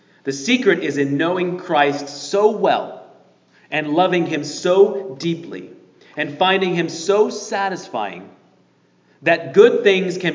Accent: American